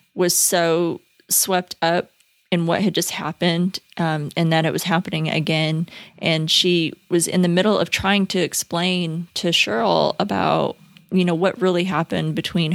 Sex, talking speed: female, 165 wpm